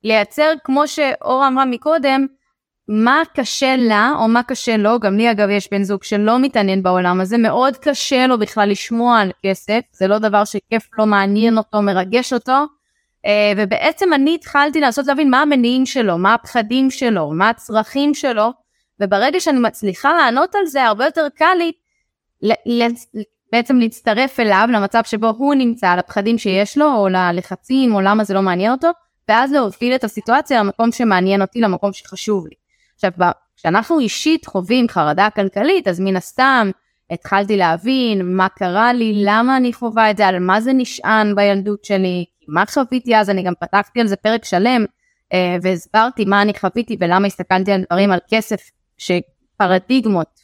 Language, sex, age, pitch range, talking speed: Hebrew, female, 20-39, 195-255 Hz, 165 wpm